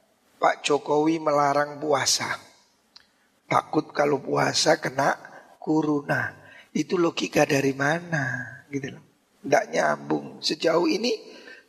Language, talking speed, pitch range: Indonesian, 90 wpm, 155-225 Hz